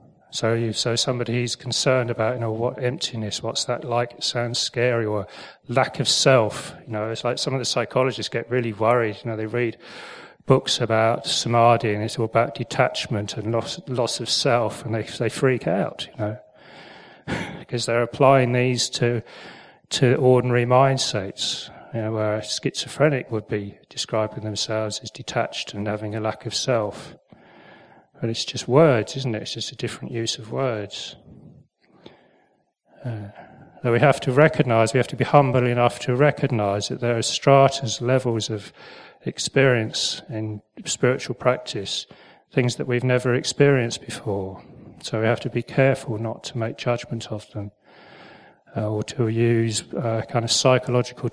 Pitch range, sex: 110-130 Hz, male